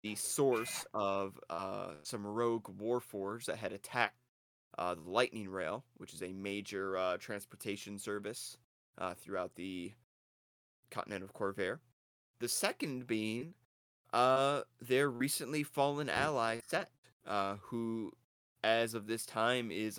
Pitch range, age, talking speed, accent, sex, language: 100-120 Hz, 20-39, 130 wpm, American, male, English